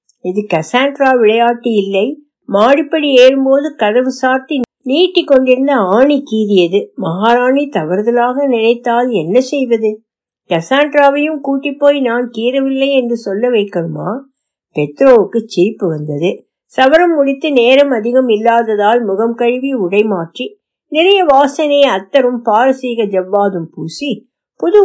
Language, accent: Tamil, native